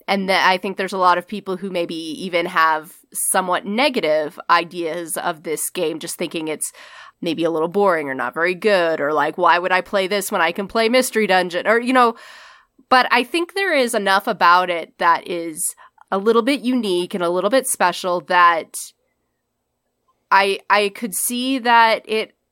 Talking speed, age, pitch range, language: 190 wpm, 20-39, 175-210 Hz, English